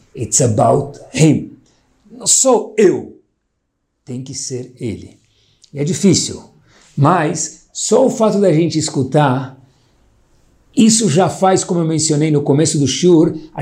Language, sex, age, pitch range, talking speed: Portuguese, male, 60-79, 125-170 Hz, 135 wpm